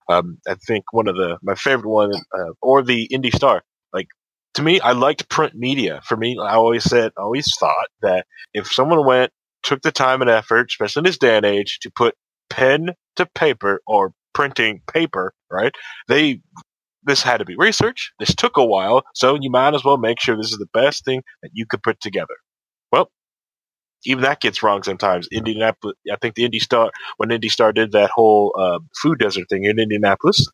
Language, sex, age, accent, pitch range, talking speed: English, male, 30-49, American, 105-130 Hz, 200 wpm